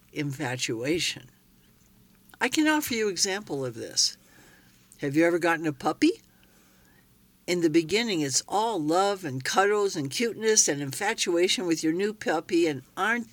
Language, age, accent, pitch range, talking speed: English, 60-79, American, 150-190 Hz, 145 wpm